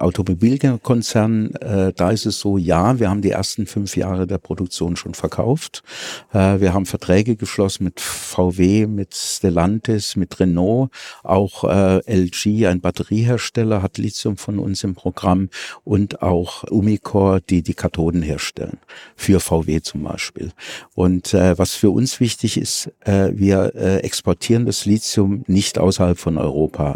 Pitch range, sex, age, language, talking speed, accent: 90-110 Hz, male, 50-69, German, 145 wpm, German